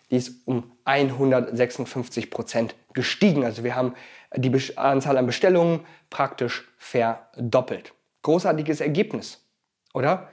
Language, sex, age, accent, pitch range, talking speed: German, male, 30-49, German, 130-175 Hz, 105 wpm